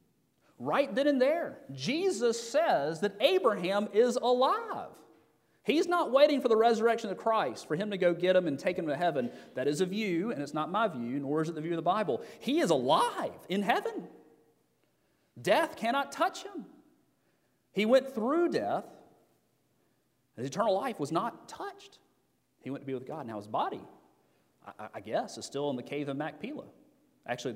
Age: 40-59